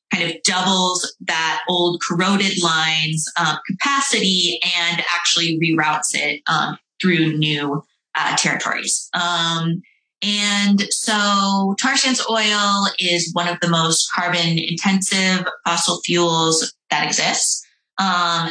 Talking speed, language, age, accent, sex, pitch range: 115 wpm, English, 20-39, American, female, 160-195 Hz